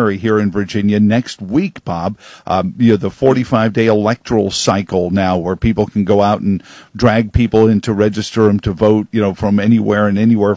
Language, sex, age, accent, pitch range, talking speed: English, male, 50-69, American, 105-120 Hz, 195 wpm